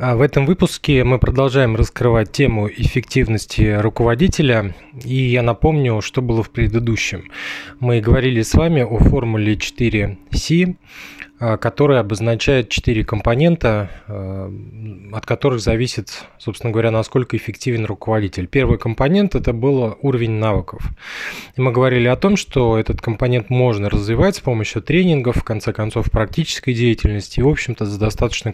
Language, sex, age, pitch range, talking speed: Russian, male, 20-39, 110-130 Hz, 130 wpm